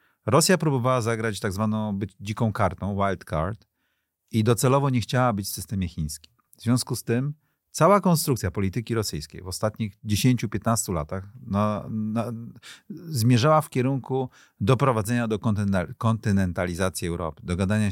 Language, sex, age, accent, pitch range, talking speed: Polish, male, 40-59, native, 95-125 Hz, 125 wpm